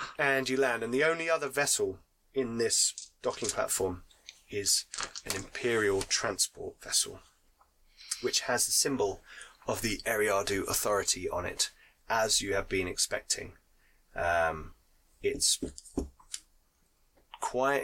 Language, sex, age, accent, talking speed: English, male, 20-39, British, 120 wpm